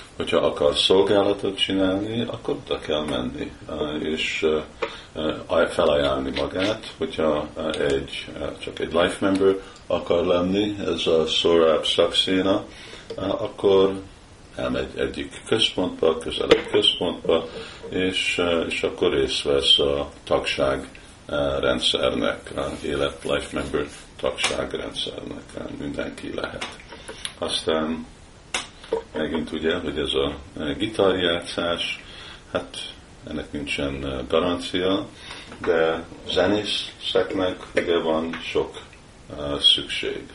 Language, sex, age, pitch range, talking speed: Hungarian, male, 50-69, 80-95 Hz, 90 wpm